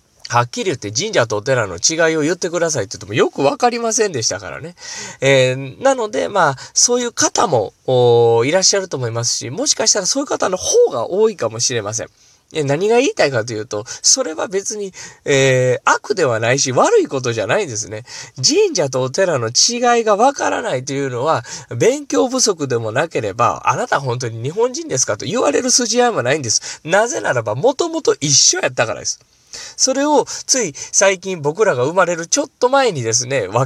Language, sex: Japanese, male